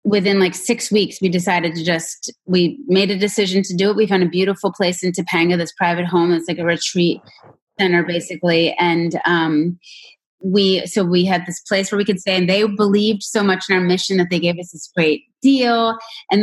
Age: 30-49